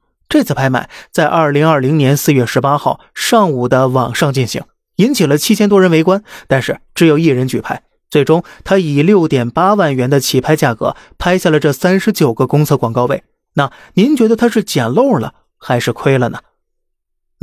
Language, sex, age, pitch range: Chinese, male, 20-39, 135-180 Hz